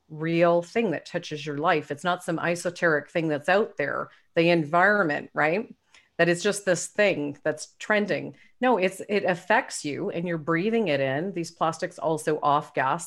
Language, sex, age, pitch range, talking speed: English, female, 40-59, 155-190 Hz, 180 wpm